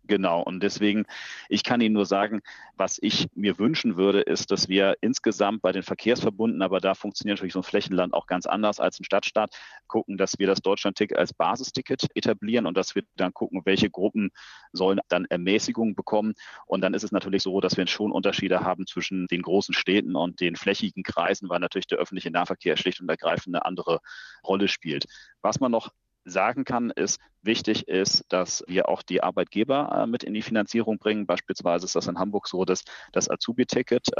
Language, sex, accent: German, male, German